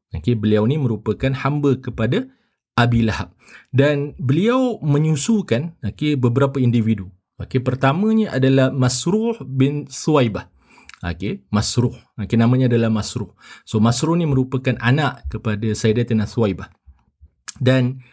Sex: male